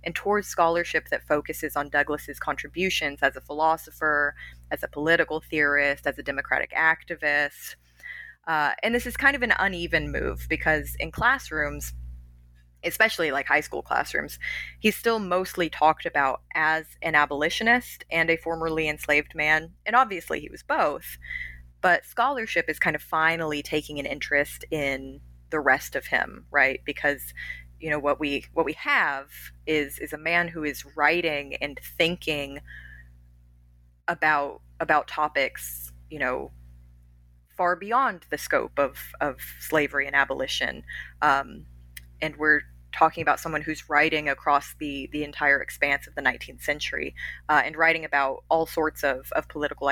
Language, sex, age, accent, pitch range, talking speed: English, female, 20-39, American, 135-160 Hz, 150 wpm